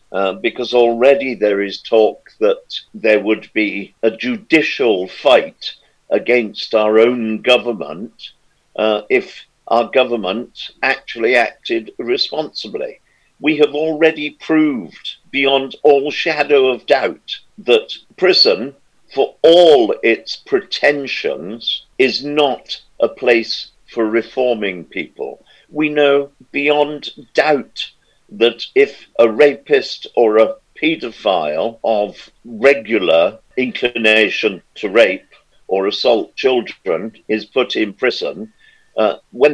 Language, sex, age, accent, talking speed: English, male, 50-69, British, 110 wpm